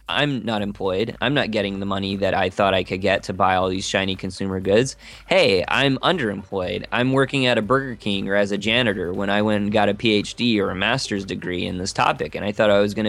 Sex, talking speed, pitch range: male, 250 wpm, 100-120 Hz